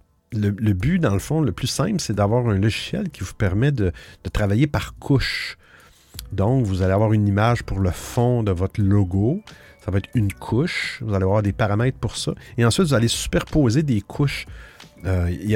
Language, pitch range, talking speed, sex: French, 95-130 Hz, 205 wpm, male